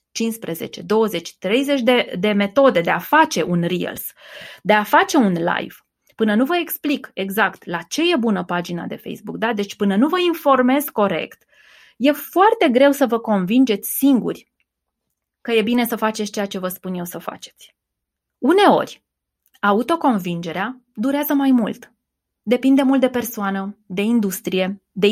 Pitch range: 205-270 Hz